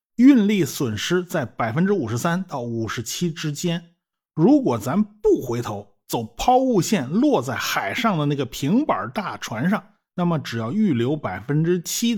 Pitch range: 120-175 Hz